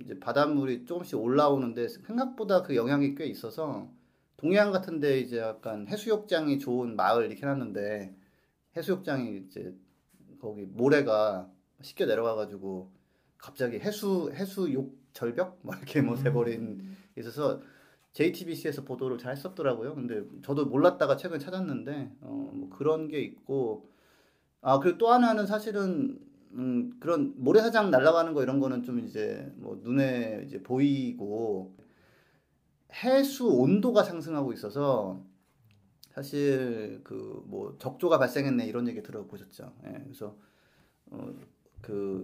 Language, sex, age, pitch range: Korean, male, 30-49, 115-175 Hz